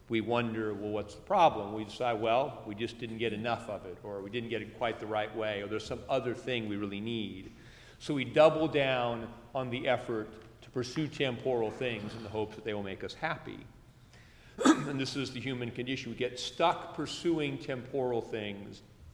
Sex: male